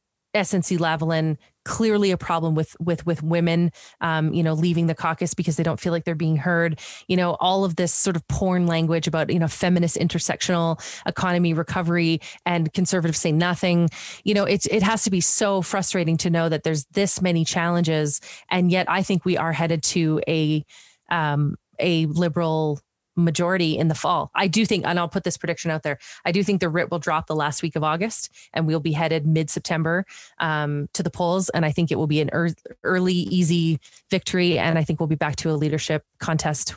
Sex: female